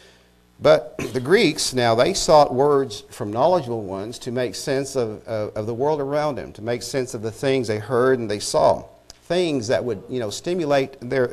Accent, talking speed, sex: American, 200 wpm, male